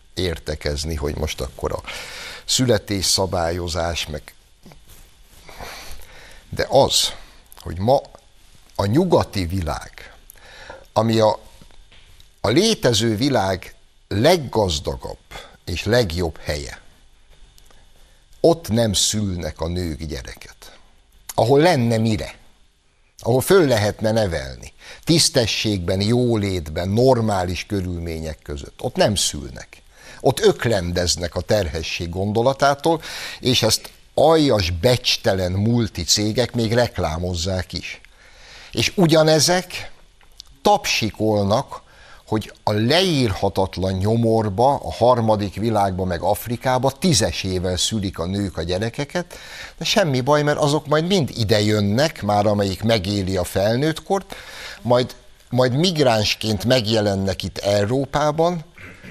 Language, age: Hungarian, 60-79